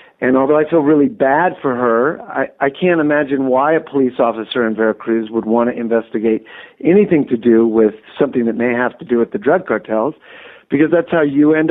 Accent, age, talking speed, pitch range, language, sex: American, 50-69, 210 wpm, 125-165 Hz, English, male